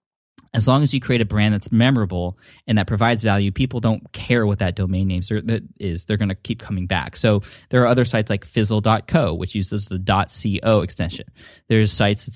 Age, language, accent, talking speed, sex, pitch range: 10-29, English, American, 200 wpm, male, 100-125 Hz